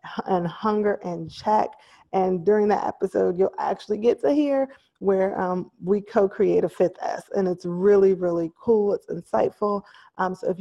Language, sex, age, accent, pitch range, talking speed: English, female, 20-39, American, 180-220 Hz, 170 wpm